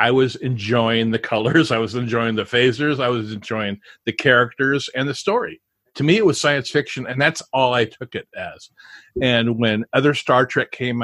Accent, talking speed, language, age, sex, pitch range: American, 200 wpm, English, 50-69, male, 120-150 Hz